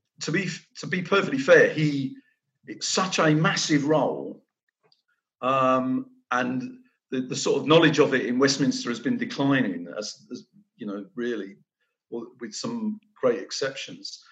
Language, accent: English, British